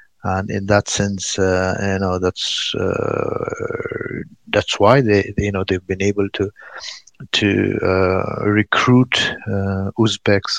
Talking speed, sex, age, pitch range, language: 130 wpm, male, 60-79, 95-115 Hz, English